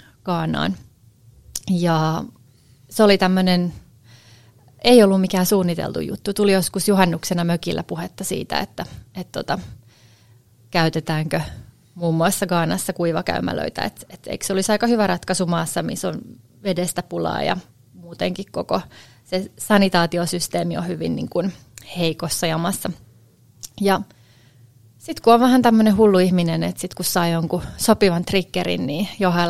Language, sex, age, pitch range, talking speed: Finnish, female, 30-49, 120-190 Hz, 130 wpm